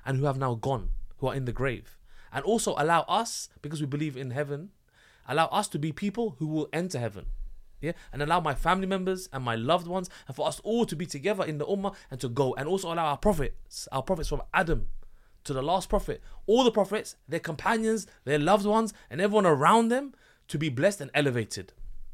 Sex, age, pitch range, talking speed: male, 20-39, 120-170 Hz, 220 wpm